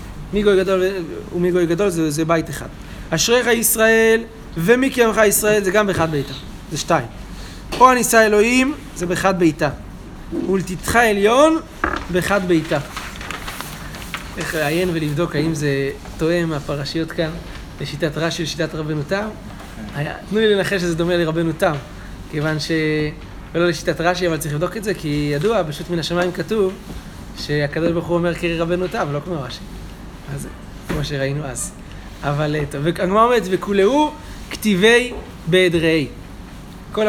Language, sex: Hebrew, male